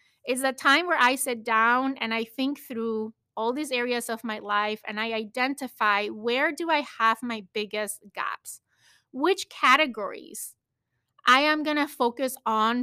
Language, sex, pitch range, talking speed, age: English, female, 225-280 Hz, 165 wpm, 30-49